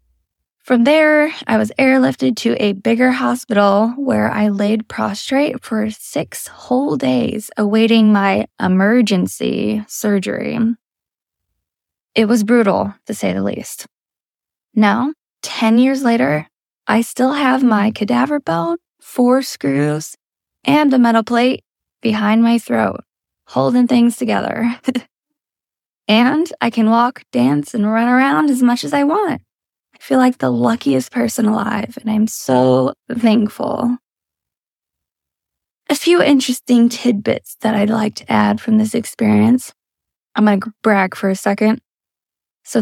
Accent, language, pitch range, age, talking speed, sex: American, English, 205-255 Hz, 10-29, 130 wpm, female